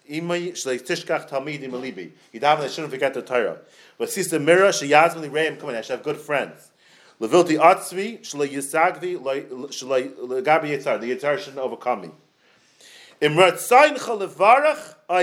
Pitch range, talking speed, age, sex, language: 125-175 Hz, 55 wpm, 40-59, male, English